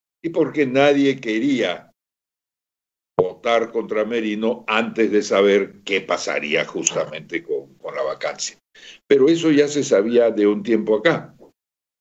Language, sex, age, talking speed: Spanish, male, 60-79, 130 wpm